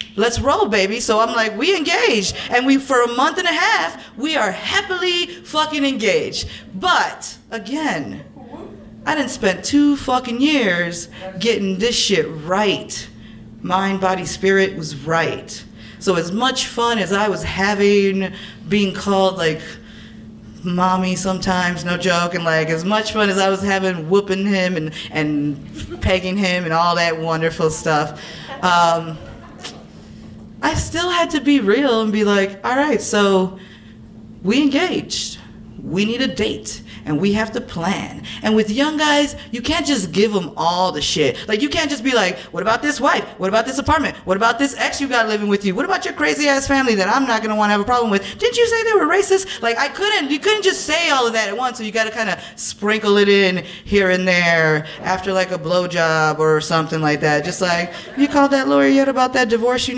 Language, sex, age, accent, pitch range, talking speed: English, female, 20-39, American, 175-260 Hz, 195 wpm